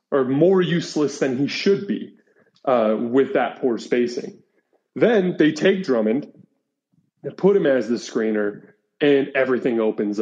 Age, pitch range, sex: 20-39, 115-145 Hz, male